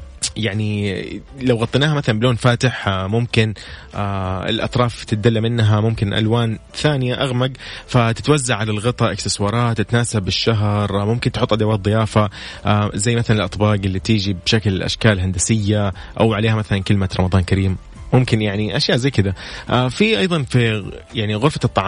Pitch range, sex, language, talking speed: 100-130 Hz, male, Arabic, 135 wpm